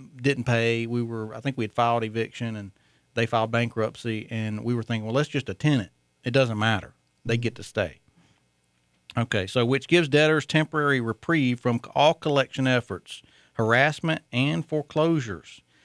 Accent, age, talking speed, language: American, 40-59, 165 wpm, English